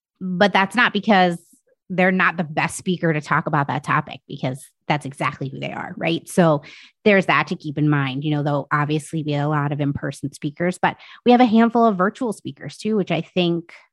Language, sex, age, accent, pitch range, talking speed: English, female, 30-49, American, 155-195 Hz, 220 wpm